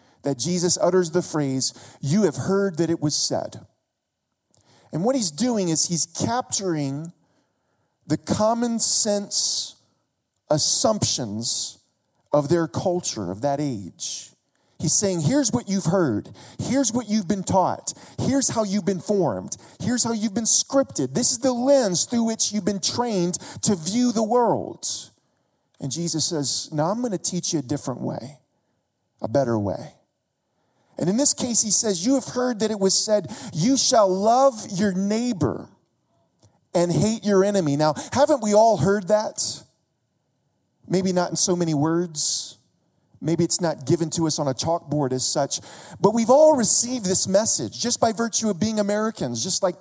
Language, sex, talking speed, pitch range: English, male, 165 wpm, 155-220 Hz